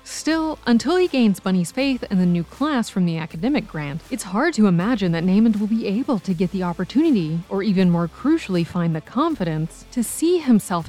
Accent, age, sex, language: American, 30-49, female, English